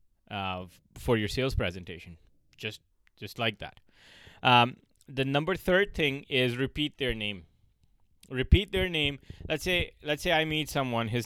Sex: male